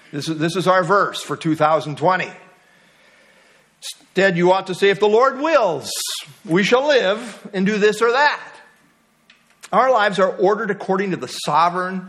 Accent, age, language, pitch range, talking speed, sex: American, 50-69, English, 180-255 Hz, 160 wpm, male